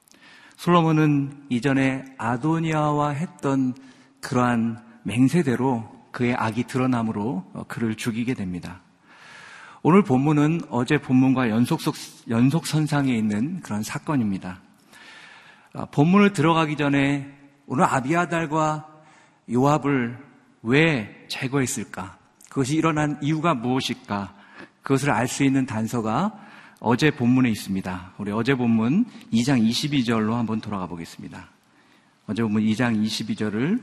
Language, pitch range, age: Korean, 115-150 Hz, 50-69